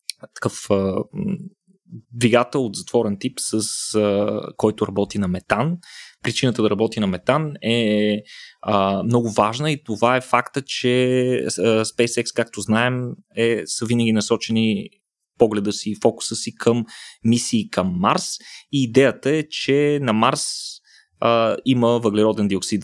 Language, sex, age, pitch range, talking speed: Bulgarian, male, 20-39, 110-145 Hz, 135 wpm